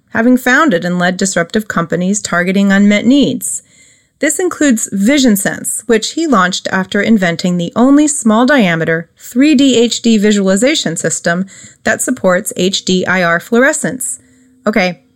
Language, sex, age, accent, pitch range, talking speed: English, female, 30-49, American, 180-245 Hz, 115 wpm